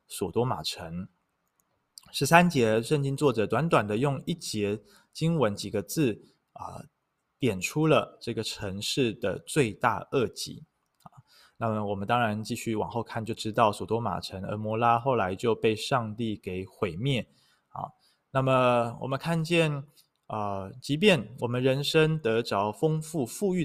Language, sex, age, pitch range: Chinese, male, 20-39, 105-145 Hz